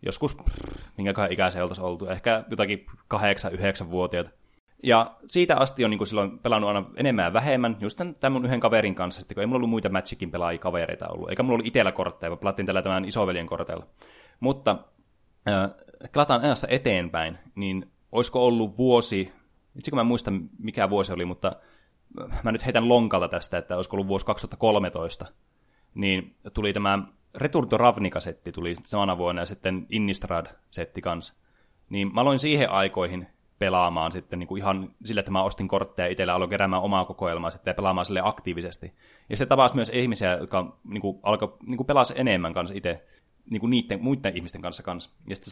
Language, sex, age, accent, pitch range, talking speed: Finnish, male, 20-39, native, 90-115 Hz, 175 wpm